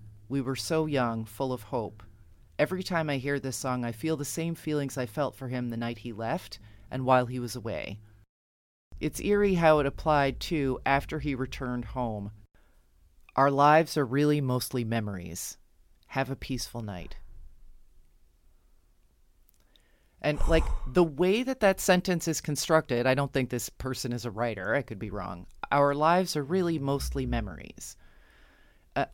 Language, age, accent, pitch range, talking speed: English, 30-49, American, 120-160 Hz, 165 wpm